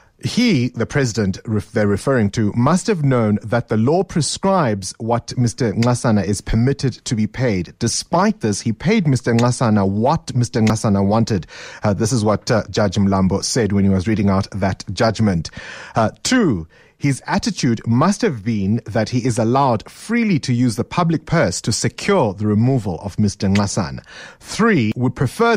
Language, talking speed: English, 170 wpm